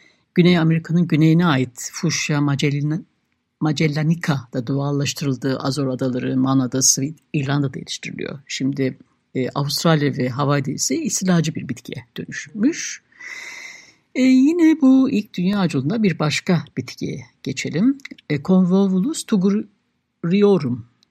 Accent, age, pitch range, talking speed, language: native, 60-79, 140-210 Hz, 105 wpm, Turkish